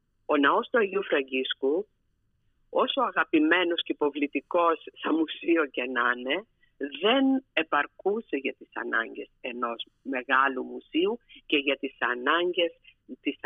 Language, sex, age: Greek, female, 50-69